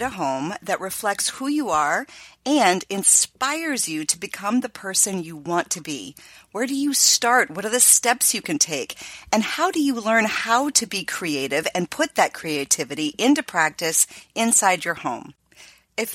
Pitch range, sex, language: 165-250 Hz, female, English